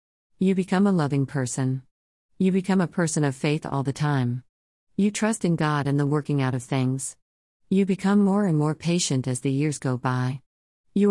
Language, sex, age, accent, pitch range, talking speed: English, female, 50-69, American, 130-170 Hz, 195 wpm